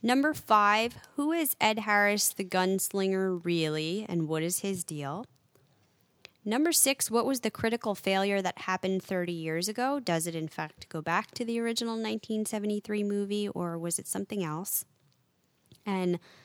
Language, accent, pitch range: English, American, 180-235 Hz